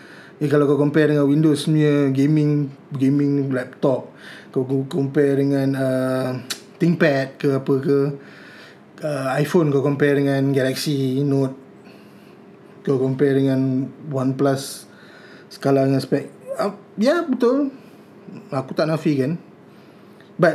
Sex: male